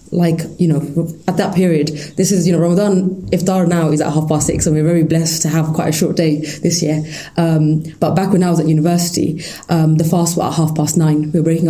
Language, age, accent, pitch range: English, 20-39, British, 155-175 Hz